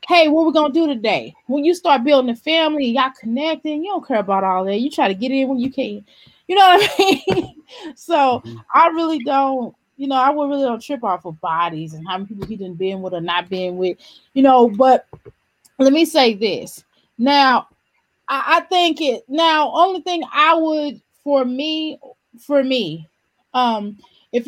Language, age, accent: English, 20-39, American